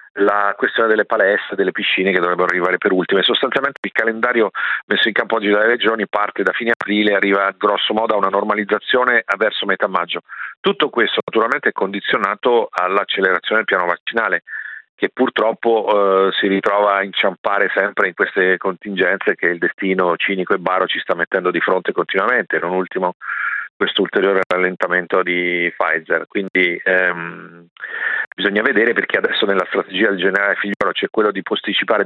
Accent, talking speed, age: native, 165 wpm, 40-59